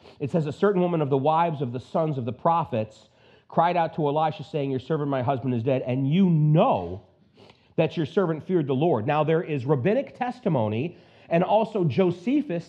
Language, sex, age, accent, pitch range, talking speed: English, male, 40-59, American, 145-210 Hz, 200 wpm